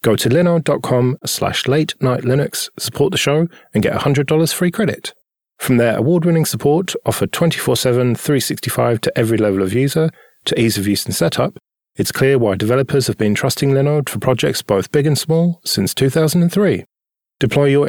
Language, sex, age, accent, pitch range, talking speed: English, male, 40-59, British, 115-150 Hz, 170 wpm